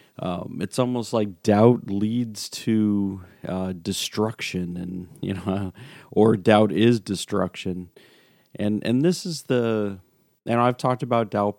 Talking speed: 135 wpm